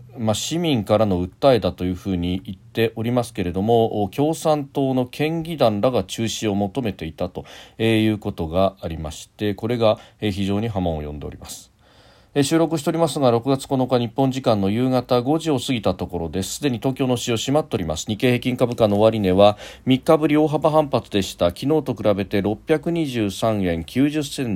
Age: 40-59